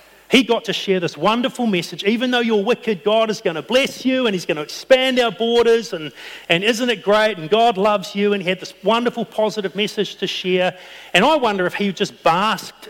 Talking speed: 230 wpm